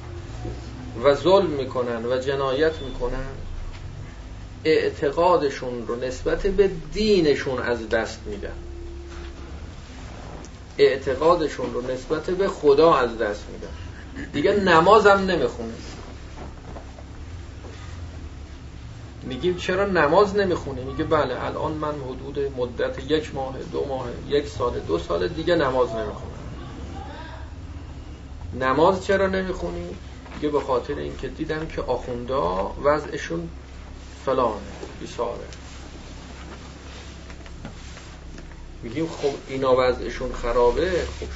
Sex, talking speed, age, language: male, 95 wpm, 40-59, Persian